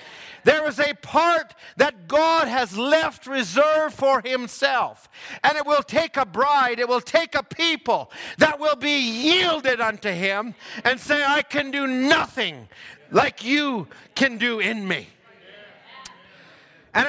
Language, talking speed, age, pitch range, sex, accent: English, 145 wpm, 50-69, 230-300 Hz, male, American